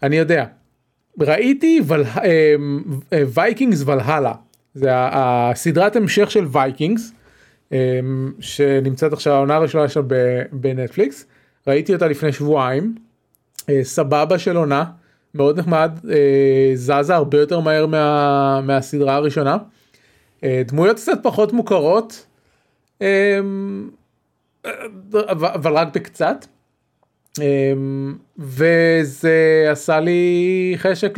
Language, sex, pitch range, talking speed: Hebrew, male, 135-180 Hz, 90 wpm